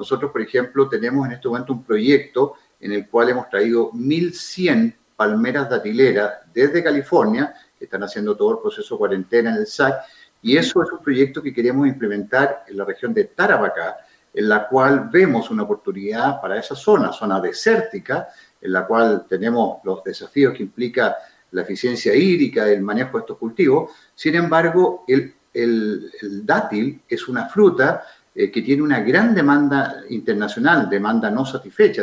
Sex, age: male, 50-69